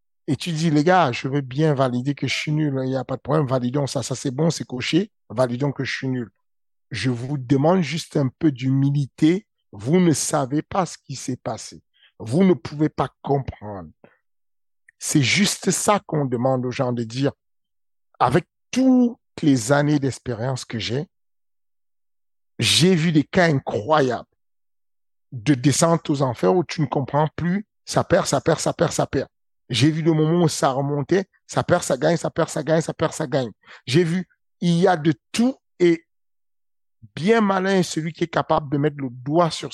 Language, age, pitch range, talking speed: French, 50-69, 125-165 Hz, 190 wpm